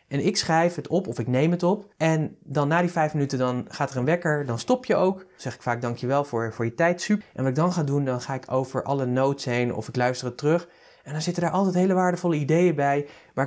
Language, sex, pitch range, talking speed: Dutch, male, 125-165 Hz, 280 wpm